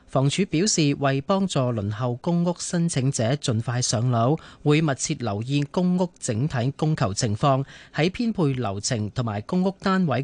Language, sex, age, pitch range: Chinese, male, 30-49, 120-165 Hz